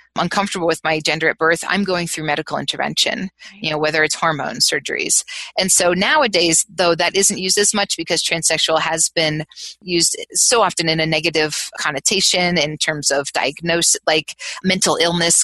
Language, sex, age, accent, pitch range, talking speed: English, female, 30-49, American, 160-190 Hz, 170 wpm